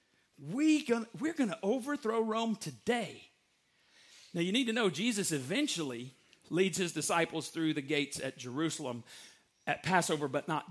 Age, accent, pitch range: 40-59, American, 145-200 Hz